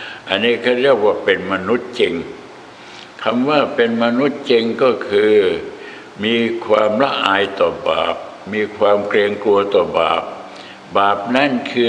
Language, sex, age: Thai, male, 60-79